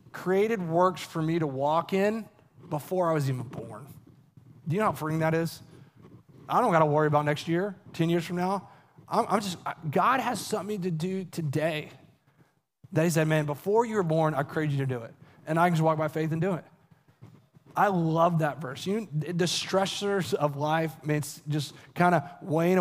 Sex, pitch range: male, 150-190 Hz